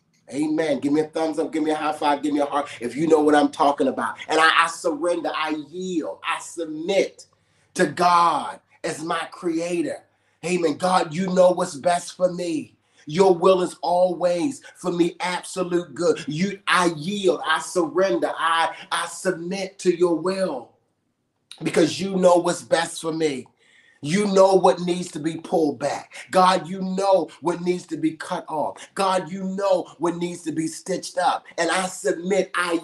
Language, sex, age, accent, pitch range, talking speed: English, male, 30-49, American, 165-190 Hz, 180 wpm